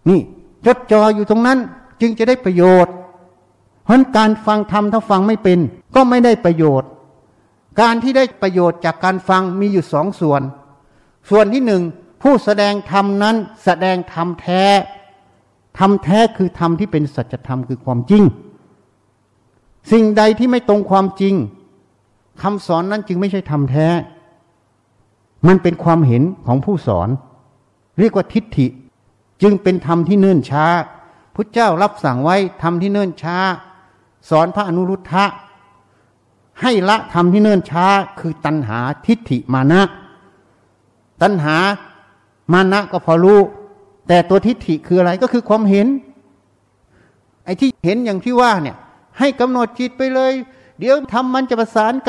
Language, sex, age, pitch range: Thai, male, 60-79, 145-210 Hz